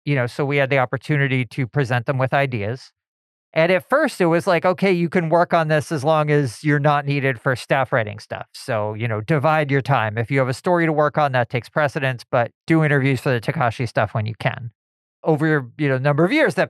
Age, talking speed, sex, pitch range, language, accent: 40-59, 245 wpm, male, 125-155 Hz, English, American